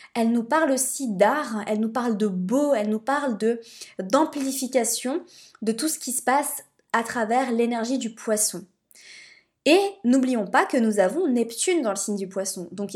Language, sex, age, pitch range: French, female, 20-39, 210-265 Hz